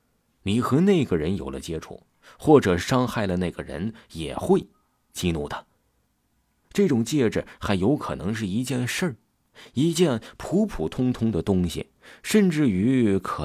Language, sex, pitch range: Chinese, male, 80-110 Hz